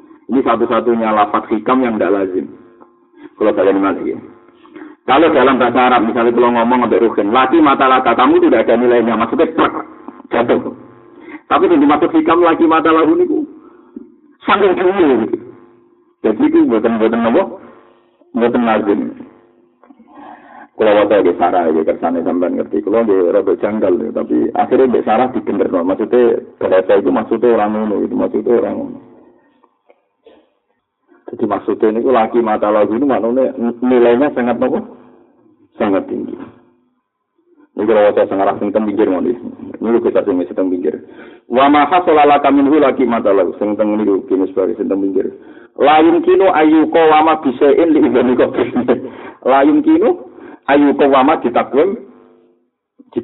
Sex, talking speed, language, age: male, 145 wpm, Indonesian, 50-69